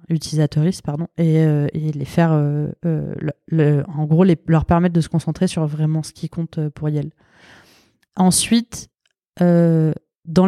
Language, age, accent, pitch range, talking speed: French, 20-39, French, 160-195 Hz, 165 wpm